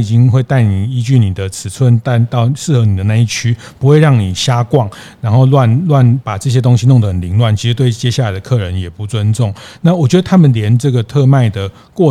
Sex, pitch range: male, 105-135 Hz